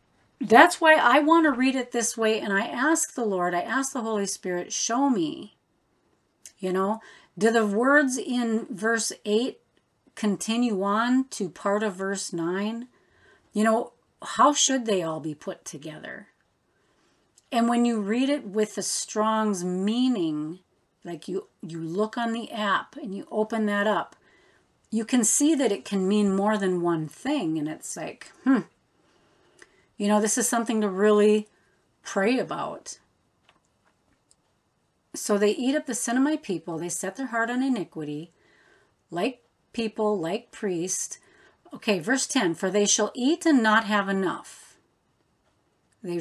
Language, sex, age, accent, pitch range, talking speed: English, female, 40-59, American, 195-255 Hz, 155 wpm